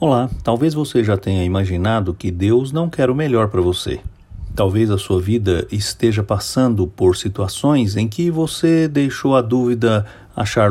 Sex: male